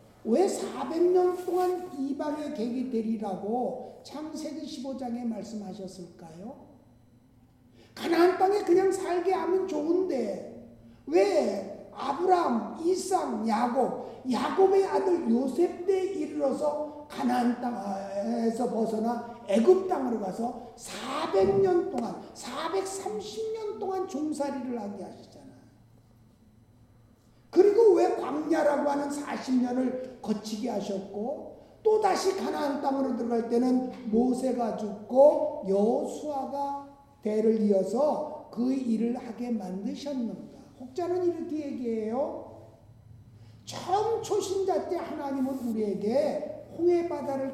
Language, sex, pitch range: Korean, male, 220-315 Hz